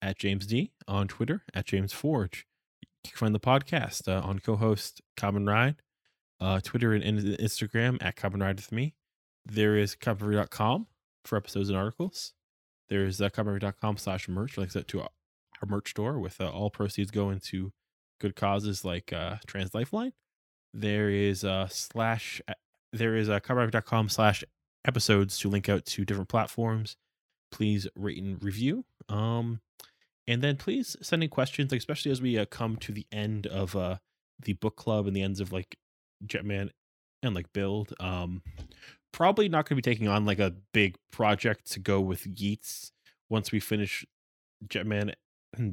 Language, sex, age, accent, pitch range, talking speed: English, male, 20-39, American, 95-115 Hz, 165 wpm